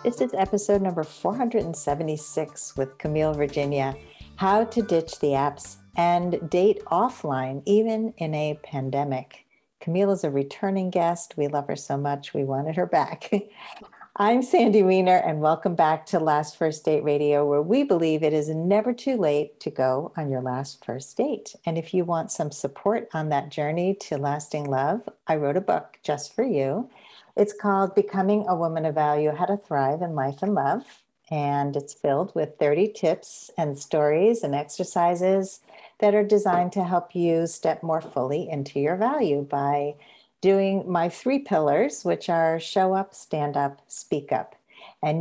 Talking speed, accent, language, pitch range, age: 170 wpm, American, English, 145-195 Hz, 50-69